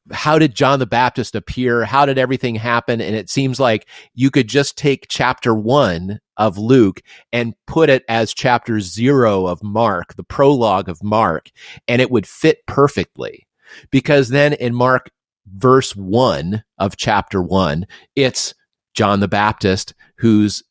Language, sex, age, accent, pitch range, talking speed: English, male, 30-49, American, 100-130 Hz, 155 wpm